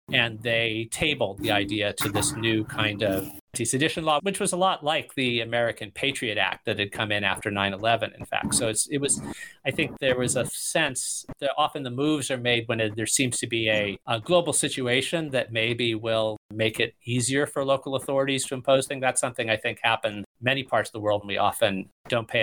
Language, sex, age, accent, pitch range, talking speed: English, male, 40-59, American, 110-135 Hz, 225 wpm